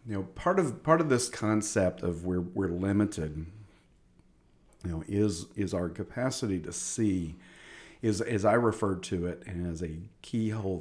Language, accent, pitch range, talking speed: English, American, 90-125 Hz, 160 wpm